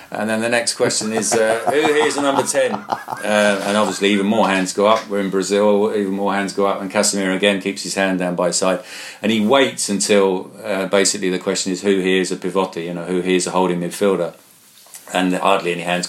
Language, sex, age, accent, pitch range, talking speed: English, male, 40-59, British, 90-100 Hz, 245 wpm